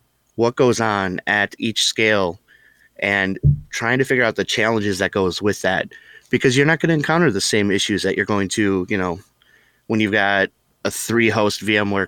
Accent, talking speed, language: American, 190 wpm, English